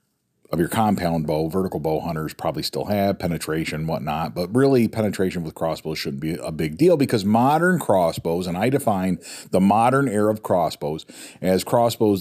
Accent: American